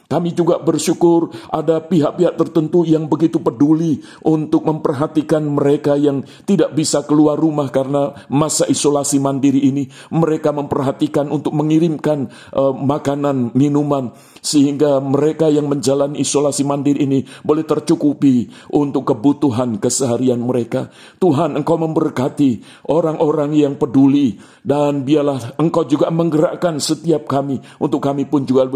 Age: 50-69